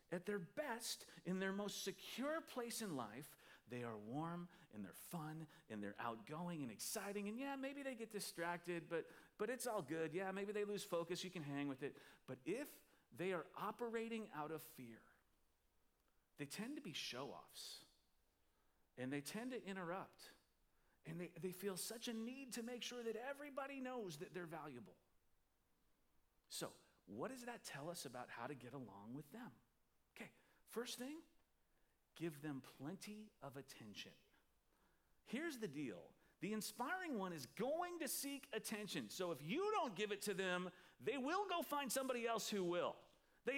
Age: 40-59